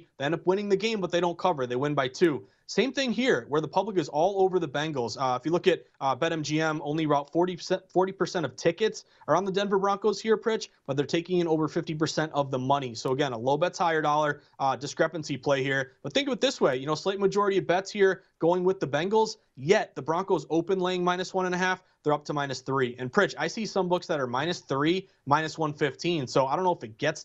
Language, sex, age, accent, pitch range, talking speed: English, male, 30-49, American, 145-185 Hz, 255 wpm